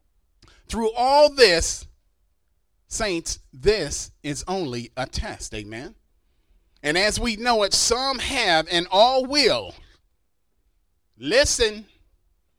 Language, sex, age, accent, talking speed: English, male, 30-49, American, 100 wpm